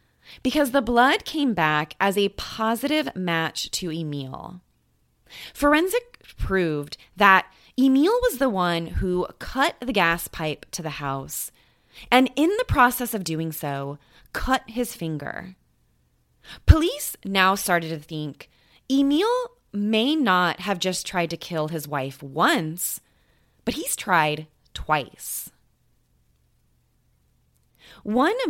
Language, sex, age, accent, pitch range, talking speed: English, female, 20-39, American, 155-250 Hz, 120 wpm